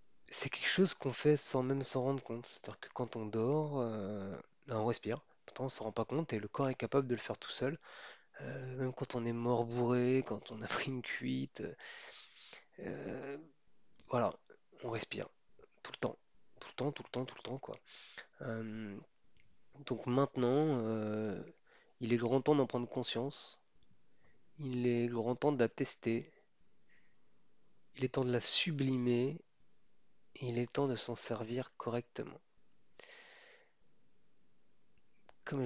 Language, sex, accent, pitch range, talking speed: French, male, French, 120-140 Hz, 160 wpm